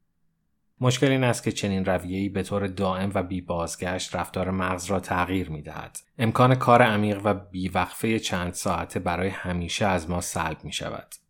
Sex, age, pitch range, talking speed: male, 30-49, 85-110 Hz, 175 wpm